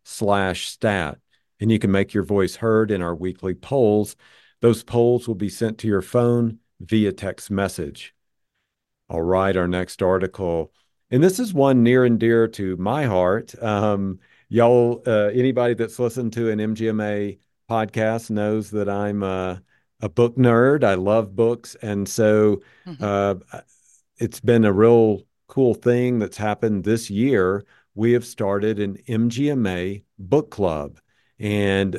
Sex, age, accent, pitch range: male, 50-69, American, 100-120 Hz